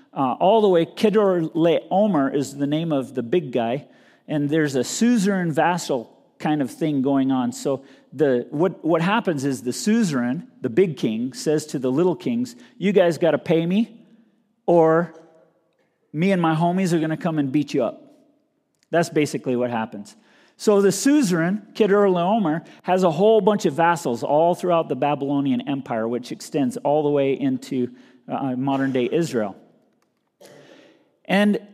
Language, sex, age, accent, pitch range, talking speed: English, male, 40-59, American, 145-195 Hz, 165 wpm